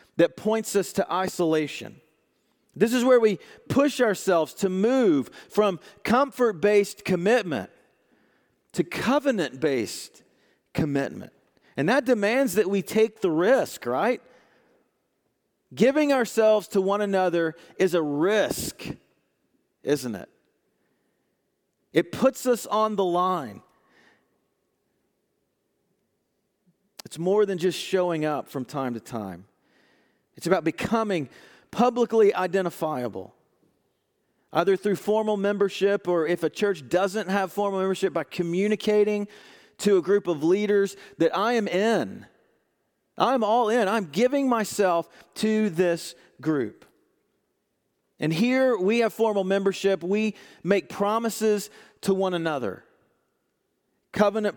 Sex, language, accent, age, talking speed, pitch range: male, English, American, 40-59, 115 wpm, 175-220 Hz